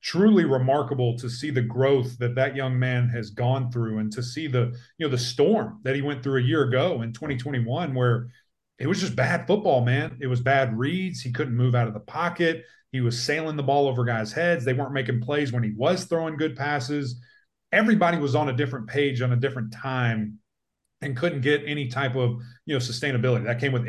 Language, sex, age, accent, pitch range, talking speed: English, male, 40-59, American, 120-150 Hz, 220 wpm